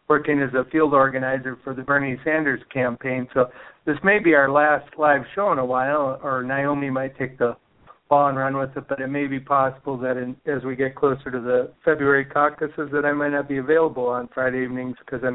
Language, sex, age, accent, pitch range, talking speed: English, male, 60-79, American, 130-150 Hz, 220 wpm